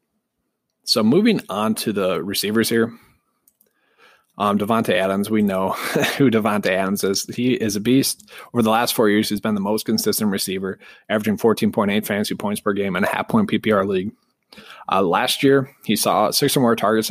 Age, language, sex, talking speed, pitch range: 20-39, English, male, 180 wpm, 105-135 Hz